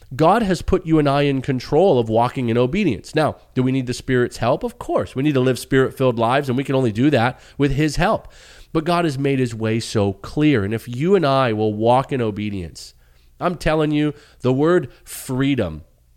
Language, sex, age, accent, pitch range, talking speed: English, male, 30-49, American, 100-145 Hz, 220 wpm